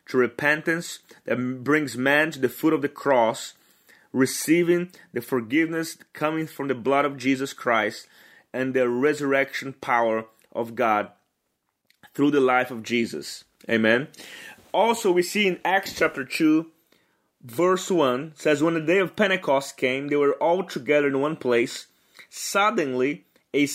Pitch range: 140-175 Hz